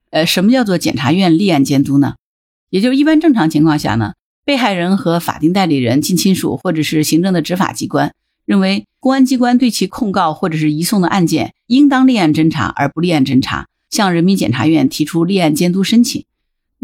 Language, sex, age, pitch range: Chinese, female, 50-69, 150-205 Hz